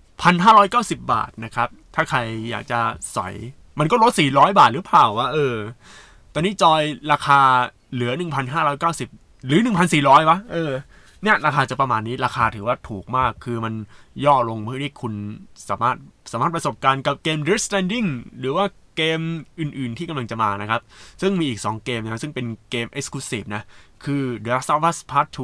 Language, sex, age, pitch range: Thai, male, 20-39, 110-155 Hz